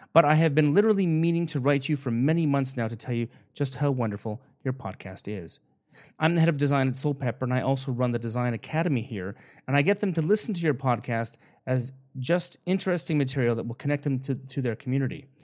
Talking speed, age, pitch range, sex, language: 225 wpm, 30-49, 120-150 Hz, male, English